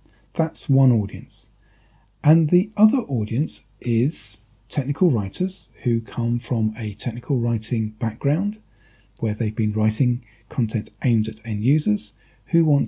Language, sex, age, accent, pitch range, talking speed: English, male, 40-59, British, 105-135 Hz, 130 wpm